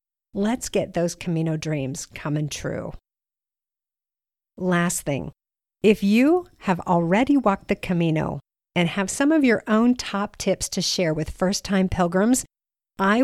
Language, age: English, 50-69